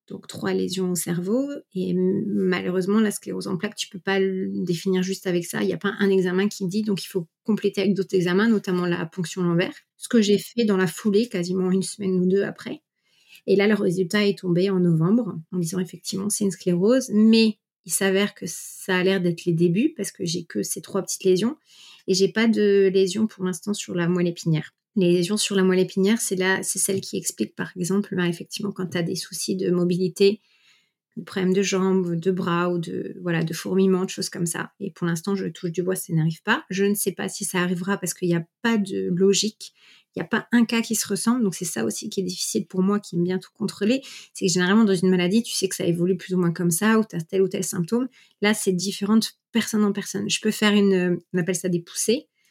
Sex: female